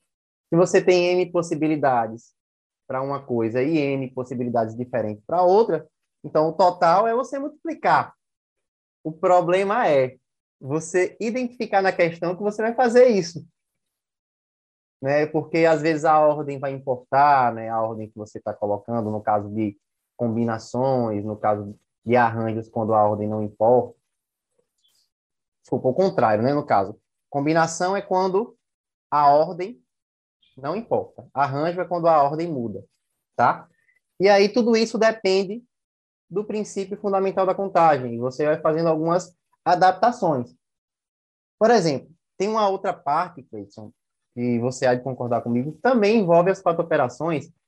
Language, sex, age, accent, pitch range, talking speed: Portuguese, male, 20-39, Brazilian, 125-195 Hz, 145 wpm